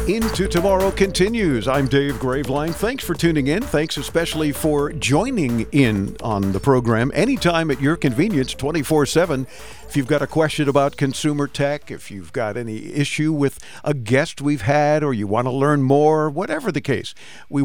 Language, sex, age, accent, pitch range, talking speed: English, male, 50-69, American, 130-165 Hz, 175 wpm